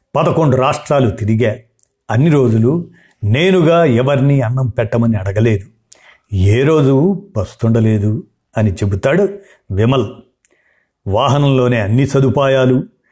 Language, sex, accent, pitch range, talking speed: Telugu, male, native, 120-150 Hz, 85 wpm